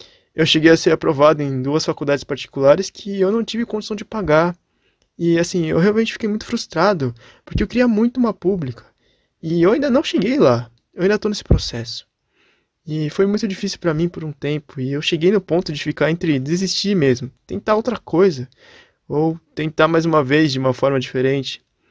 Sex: male